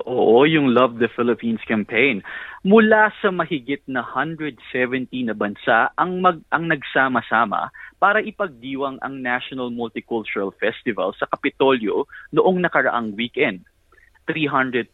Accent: native